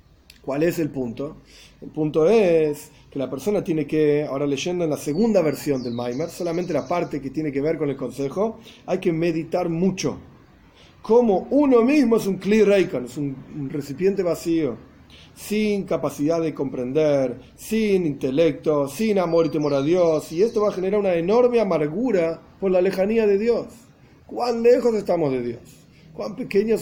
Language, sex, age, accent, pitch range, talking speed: Spanish, male, 40-59, Argentinian, 145-205 Hz, 170 wpm